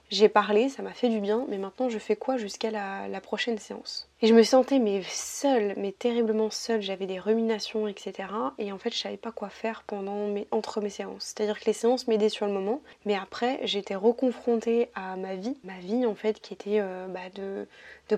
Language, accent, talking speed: French, French, 225 wpm